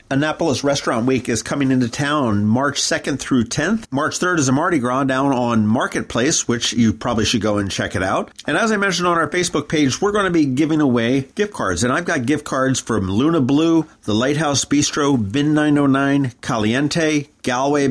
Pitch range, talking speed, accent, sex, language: 110-150 Hz, 200 wpm, American, male, English